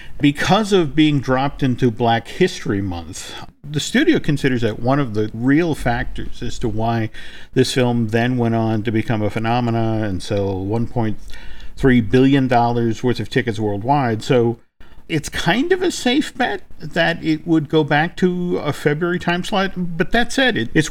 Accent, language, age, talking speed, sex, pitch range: American, English, 50-69, 165 wpm, male, 115-150 Hz